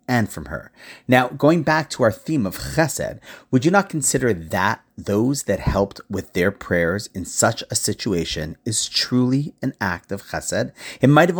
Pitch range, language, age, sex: 100-145 Hz, English, 40-59, male